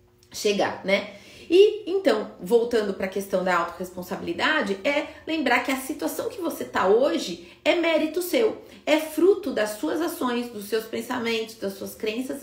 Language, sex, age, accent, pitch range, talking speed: Portuguese, female, 30-49, Brazilian, 210-290 Hz, 160 wpm